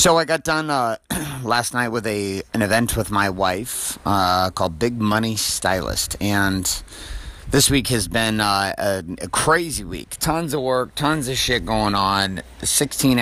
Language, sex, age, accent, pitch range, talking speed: English, male, 30-49, American, 95-125 Hz, 175 wpm